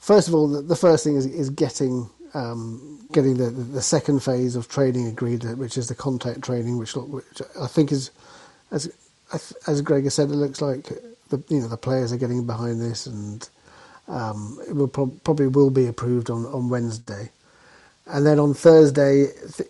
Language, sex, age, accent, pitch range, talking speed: English, male, 40-59, British, 125-150 Hz, 190 wpm